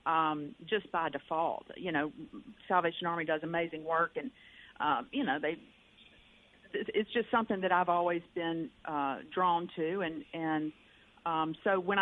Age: 50-69